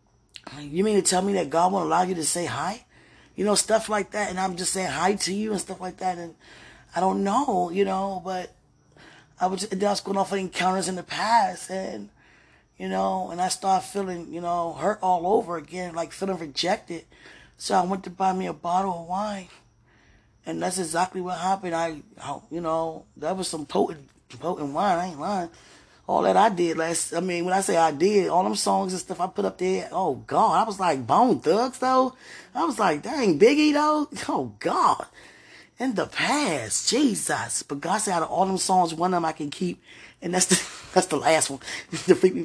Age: 20-39